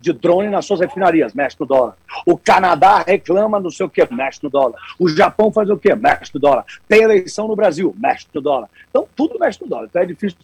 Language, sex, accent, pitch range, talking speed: Portuguese, male, Brazilian, 155-225 Hz, 235 wpm